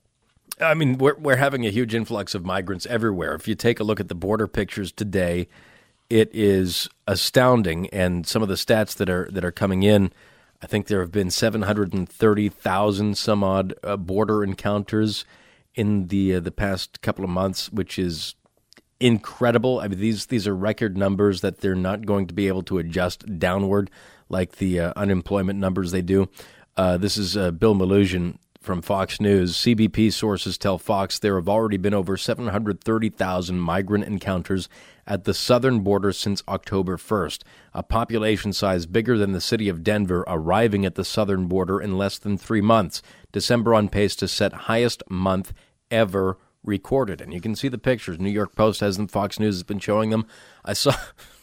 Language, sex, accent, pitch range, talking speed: English, male, American, 95-110 Hz, 185 wpm